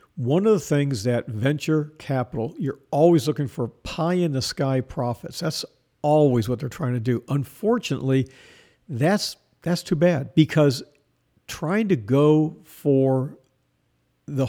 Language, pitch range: English, 125-155 Hz